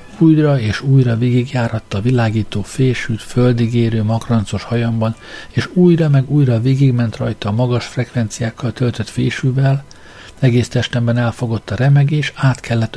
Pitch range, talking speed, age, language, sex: 110-135 Hz, 135 wpm, 60-79, Hungarian, male